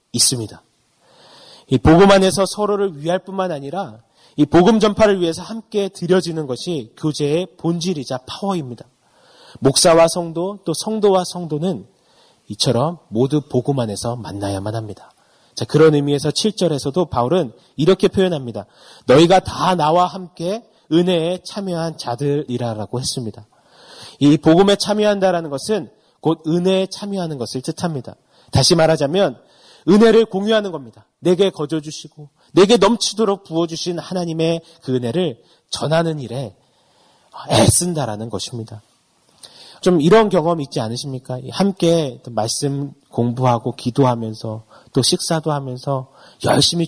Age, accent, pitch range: 30-49, native, 130-180 Hz